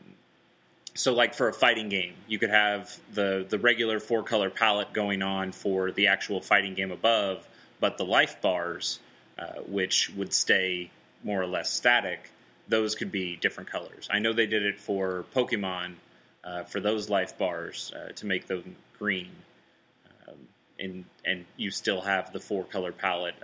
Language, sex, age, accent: English, male, 30-49, American